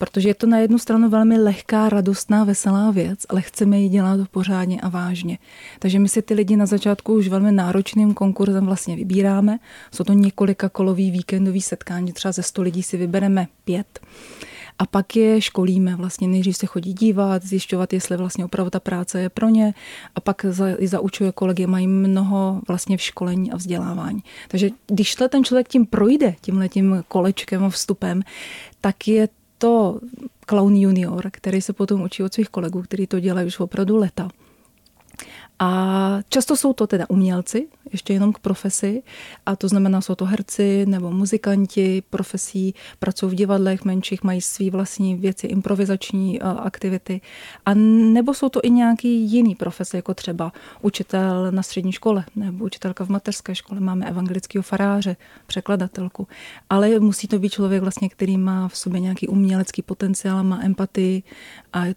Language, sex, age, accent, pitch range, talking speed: Czech, female, 30-49, native, 185-205 Hz, 165 wpm